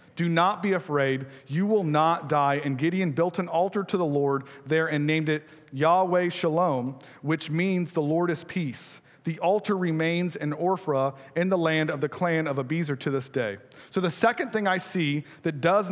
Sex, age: male, 40-59